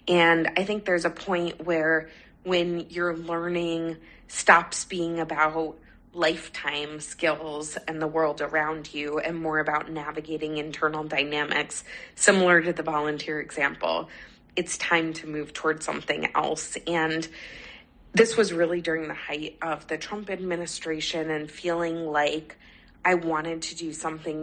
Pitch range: 155-175 Hz